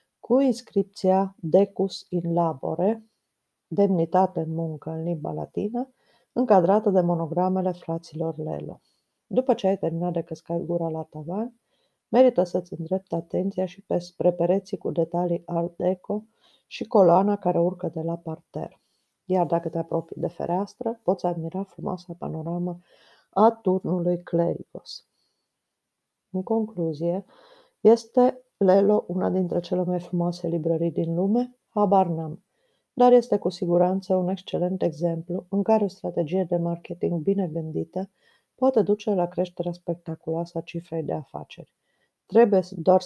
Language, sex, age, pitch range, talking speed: Romanian, female, 50-69, 170-200 Hz, 135 wpm